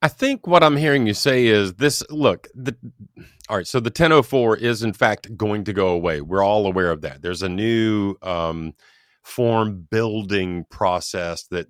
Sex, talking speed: male, 185 wpm